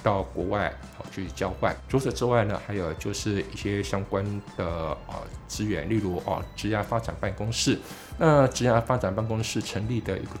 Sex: male